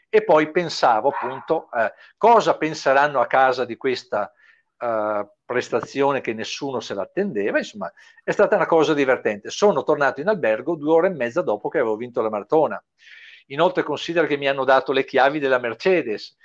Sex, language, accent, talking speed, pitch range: male, Italian, native, 170 wpm, 135-205 Hz